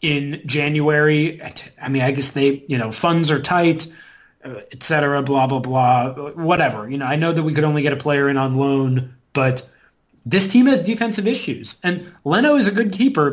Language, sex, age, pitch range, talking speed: English, male, 30-49, 140-175 Hz, 200 wpm